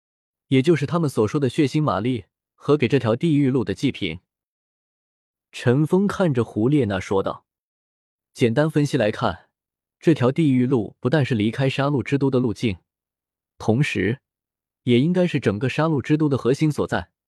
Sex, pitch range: male, 105-145 Hz